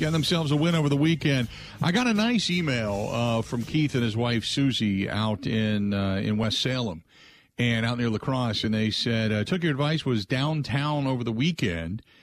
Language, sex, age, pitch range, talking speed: English, male, 50-69, 105-140 Hz, 200 wpm